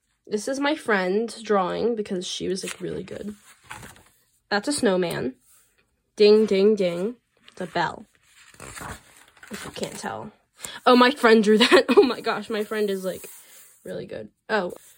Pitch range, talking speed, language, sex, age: 195-240 Hz, 155 wpm, English, female, 10-29